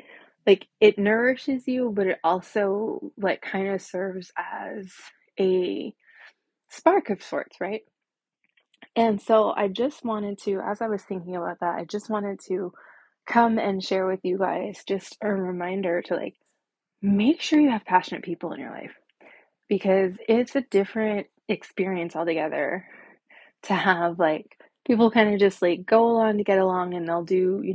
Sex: female